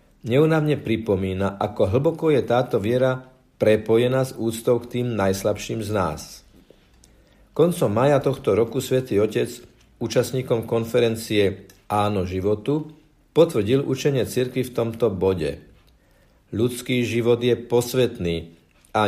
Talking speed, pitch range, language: 115 wpm, 105-135 Hz, Slovak